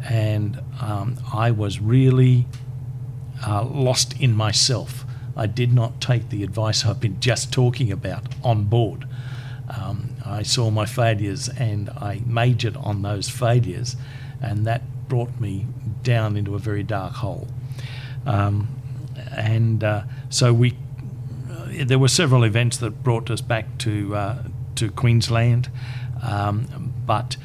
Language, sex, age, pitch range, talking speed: English, male, 50-69, 115-130 Hz, 140 wpm